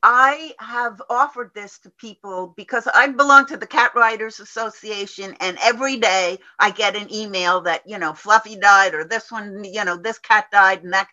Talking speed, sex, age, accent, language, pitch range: 195 wpm, female, 50-69, American, English, 190-240 Hz